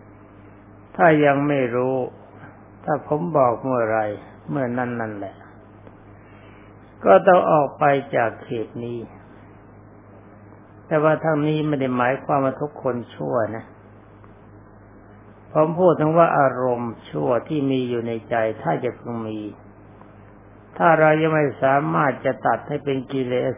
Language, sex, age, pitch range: Thai, male, 60-79, 105-140 Hz